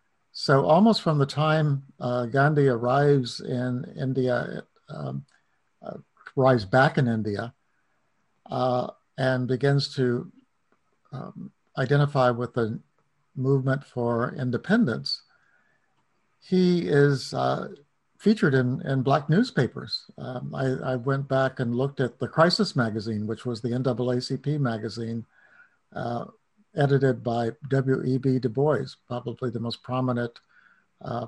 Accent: American